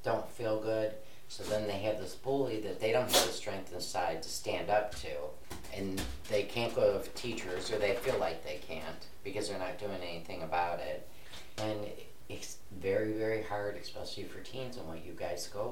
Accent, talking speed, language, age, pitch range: American, 200 wpm, English, 40-59, 90-110 Hz